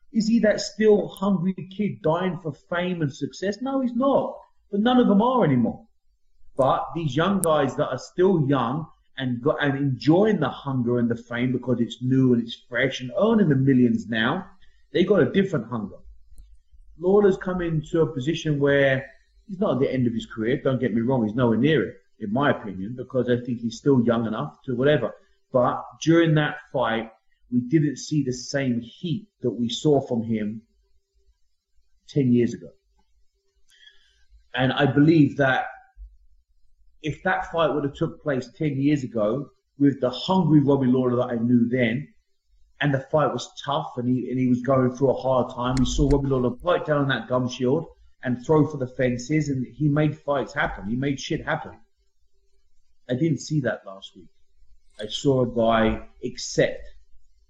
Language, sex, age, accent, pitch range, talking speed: English, male, 30-49, British, 120-160 Hz, 185 wpm